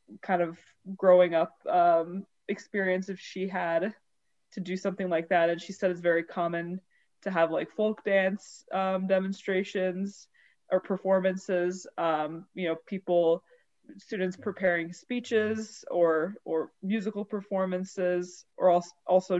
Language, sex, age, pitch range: English, female, 20-39, 175-195 Hz